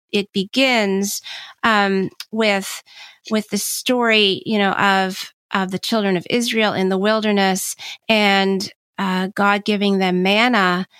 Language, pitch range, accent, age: English, 190-230 Hz, American, 30-49